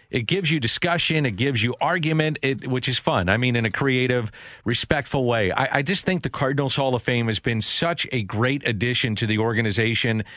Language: English